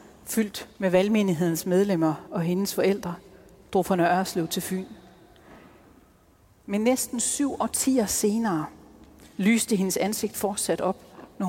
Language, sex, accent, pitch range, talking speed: Danish, female, native, 170-205 Hz, 120 wpm